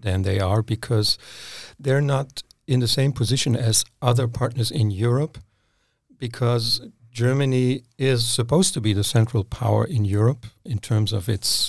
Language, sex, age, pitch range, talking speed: English, male, 50-69, 110-130 Hz, 155 wpm